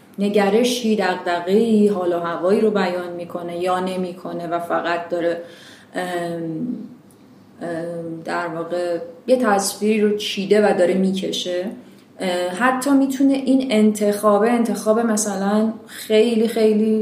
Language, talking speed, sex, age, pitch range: Persian, 110 wpm, female, 30-49, 175-215 Hz